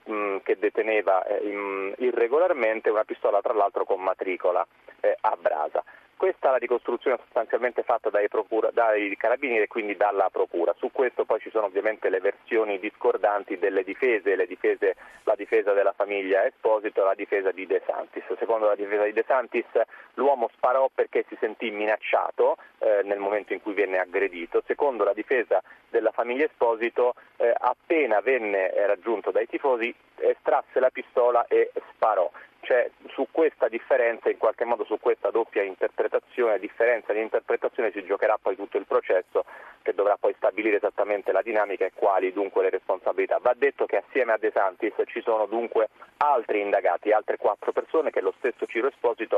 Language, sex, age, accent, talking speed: Italian, male, 30-49, native, 170 wpm